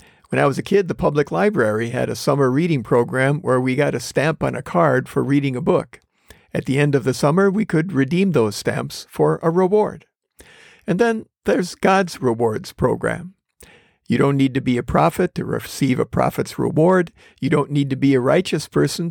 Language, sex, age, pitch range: English, male, 50-69, 135-180 Hz